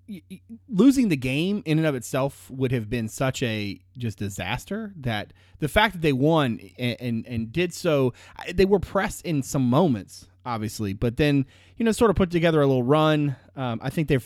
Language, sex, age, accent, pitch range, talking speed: English, male, 30-49, American, 105-150 Hz, 200 wpm